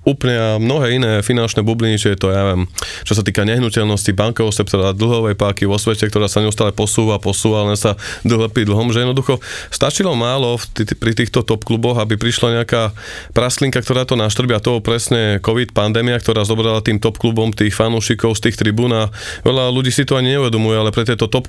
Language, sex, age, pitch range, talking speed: Slovak, male, 20-39, 105-120 Hz, 195 wpm